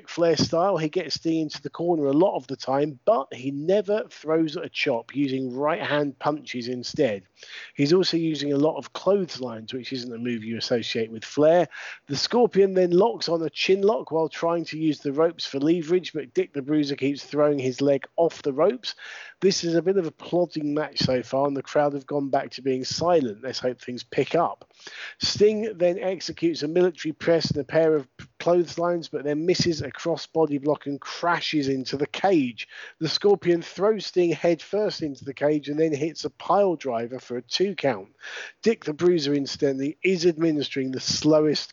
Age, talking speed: 40-59, 200 wpm